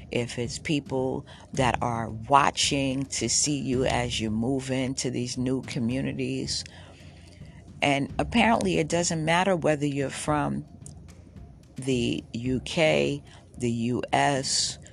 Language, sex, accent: English, female, American